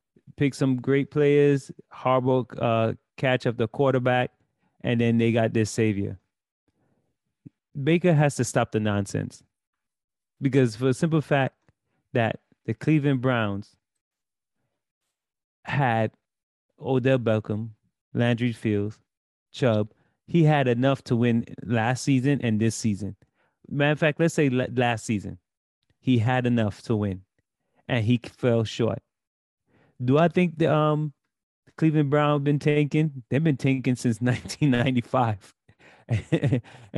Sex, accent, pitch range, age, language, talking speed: male, American, 115-145 Hz, 30-49, English, 125 wpm